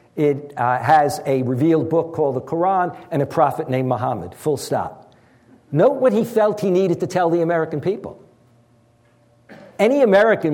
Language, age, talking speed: English, 60-79, 165 wpm